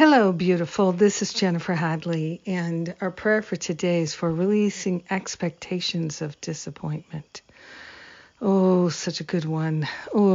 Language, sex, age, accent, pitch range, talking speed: English, female, 50-69, American, 165-190 Hz, 135 wpm